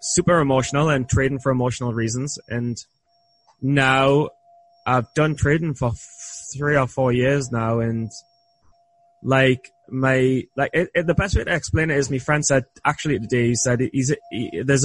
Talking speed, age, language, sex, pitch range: 150 wpm, 20-39, English, male, 120-150 Hz